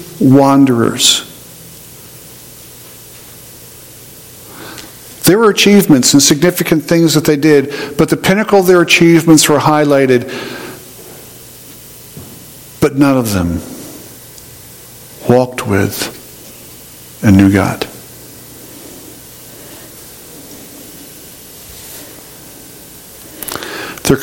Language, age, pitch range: English, 50-69, 110-150 Hz